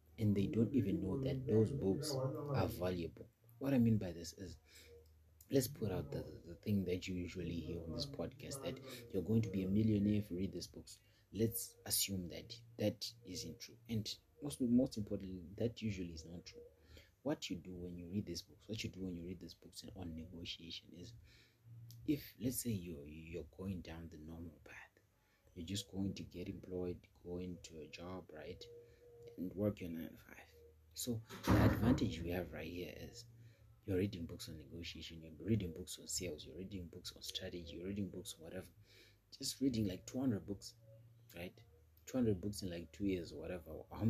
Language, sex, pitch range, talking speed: English, male, 90-115 Hz, 195 wpm